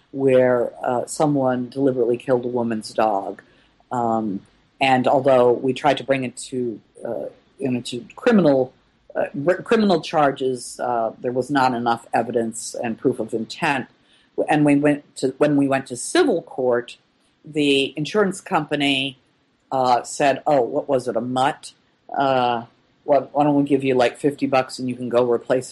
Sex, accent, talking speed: female, American, 165 wpm